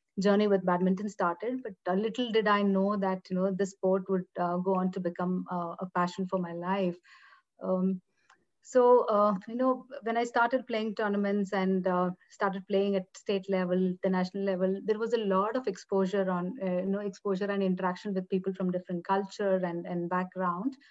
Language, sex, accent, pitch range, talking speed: English, female, Indian, 185-205 Hz, 195 wpm